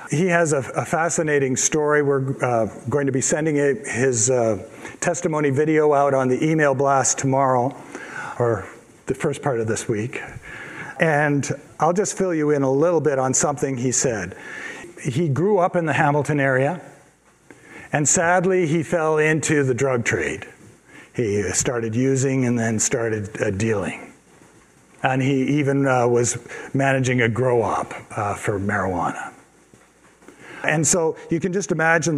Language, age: English, 50-69